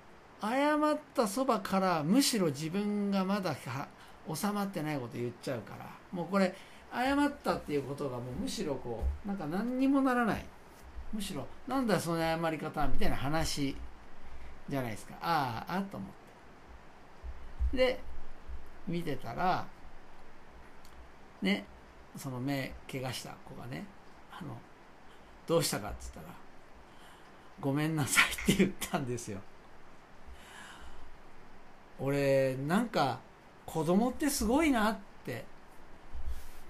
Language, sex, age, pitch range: Japanese, male, 50-69, 135-215 Hz